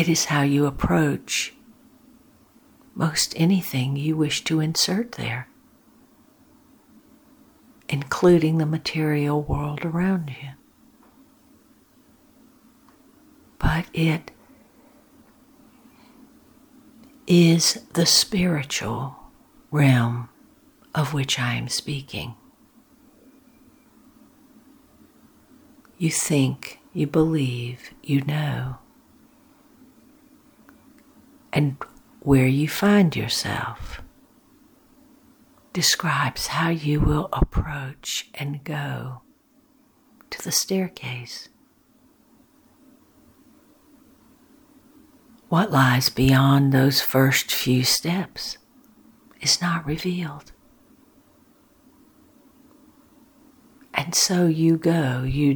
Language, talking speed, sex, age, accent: English, 70 wpm, female, 60-79, American